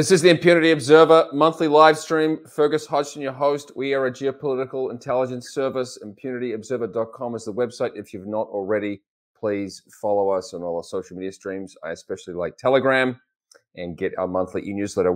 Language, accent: English, Australian